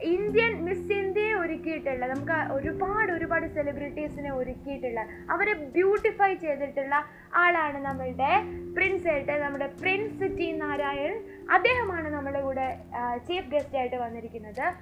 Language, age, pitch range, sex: Malayalam, 20-39, 285-360 Hz, female